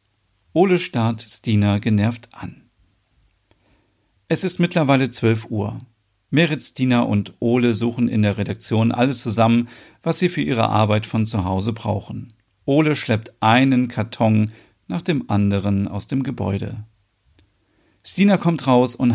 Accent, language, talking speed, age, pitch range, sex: German, German, 135 wpm, 40-59, 100-130 Hz, male